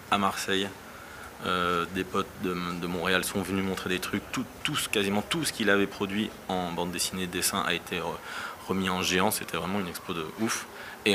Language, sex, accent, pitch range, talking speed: French, male, French, 90-100 Hz, 205 wpm